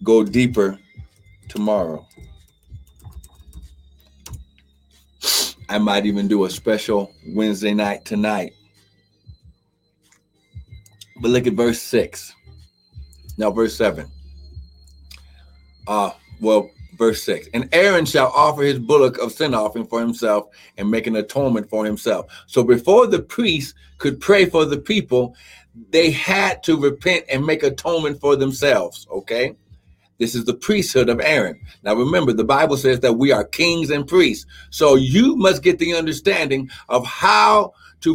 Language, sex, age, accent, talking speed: English, male, 50-69, American, 135 wpm